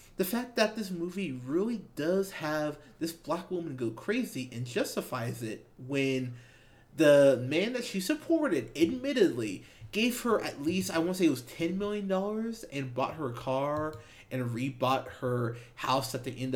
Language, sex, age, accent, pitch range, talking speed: English, male, 30-49, American, 125-175 Hz, 170 wpm